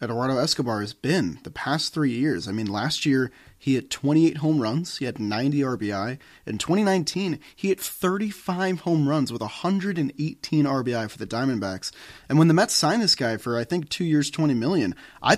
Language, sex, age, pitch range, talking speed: English, male, 30-49, 115-150 Hz, 190 wpm